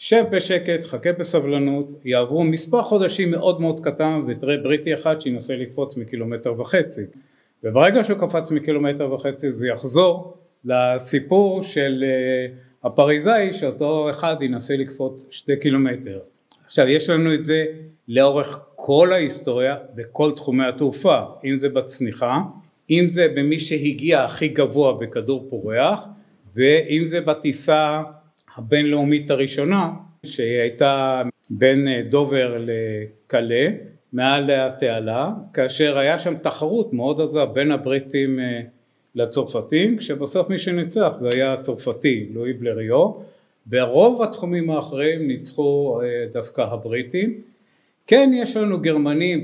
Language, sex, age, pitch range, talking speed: Hebrew, male, 50-69, 130-165 Hz, 115 wpm